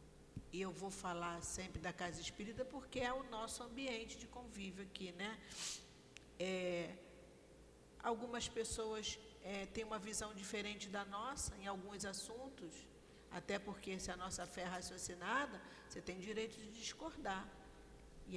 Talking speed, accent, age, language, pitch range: 145 wpm, Brazilian, 50-69, Portuguese, 180-235 Hz